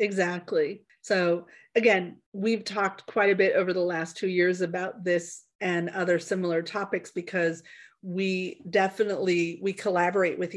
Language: English